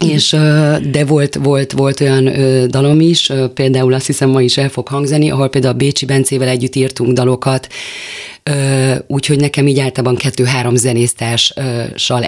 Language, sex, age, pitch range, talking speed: Hungarian, female, 30-49, 125-140 Hz, 145 wpm